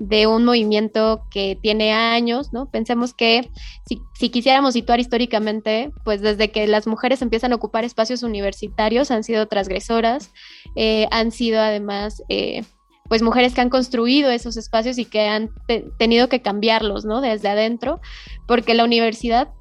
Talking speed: 160 wpm